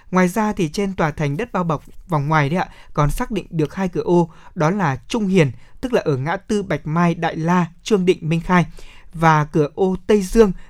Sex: male